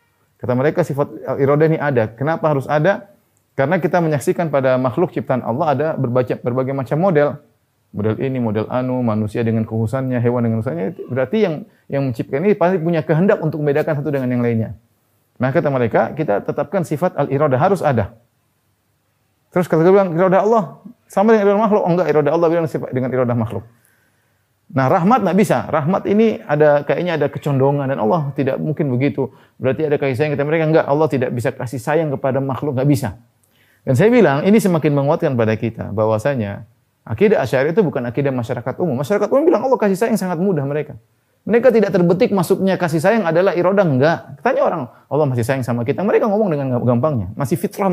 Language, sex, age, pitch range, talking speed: Indonesian, male, 30-49, 125-175 Hz, 185 wpm